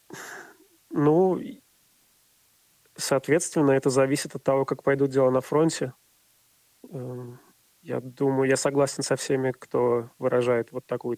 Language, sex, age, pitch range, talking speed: Russian, male, 30-49, 125-145 Hz, 115 wpm